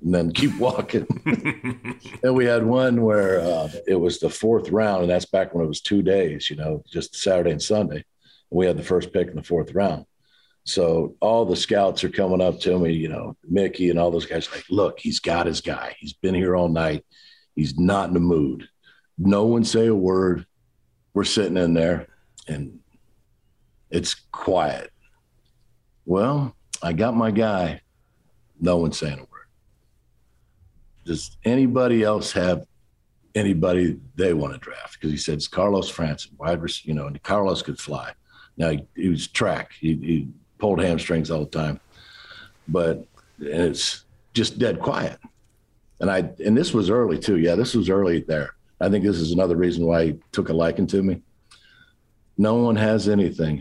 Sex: male